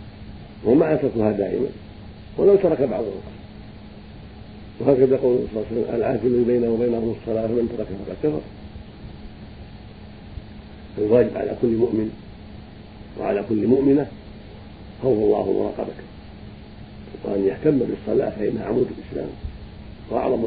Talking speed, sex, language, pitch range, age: 105 wpm, male, Arabic, 105-120 Hz, 50-69